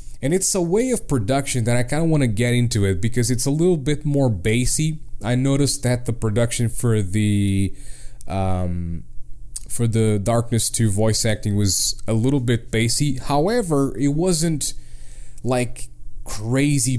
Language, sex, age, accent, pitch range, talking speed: English, male, 20-39, American, 105-130 Hz, 165 wpm